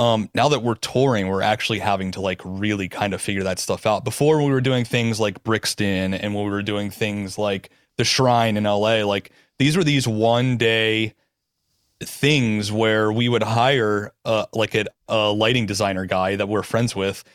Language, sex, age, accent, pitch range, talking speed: English, male, 30-49, American, 105-125 Hz, 195 wpm